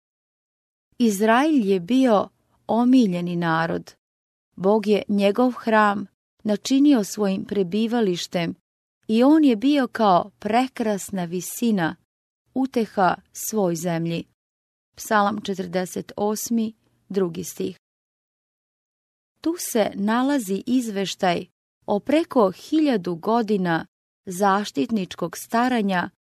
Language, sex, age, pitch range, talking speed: English, female, 30-49, 195-240 Hz, 80 wpm